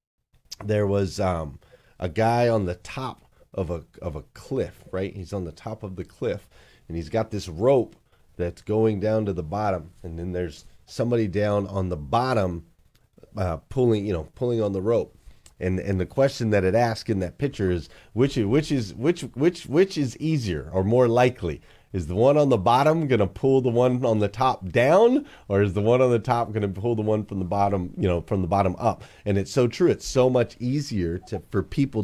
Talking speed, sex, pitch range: 215 wpm, male, 90-120 Hz